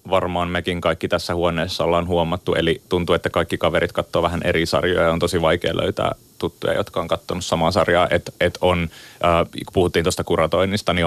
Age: 30-49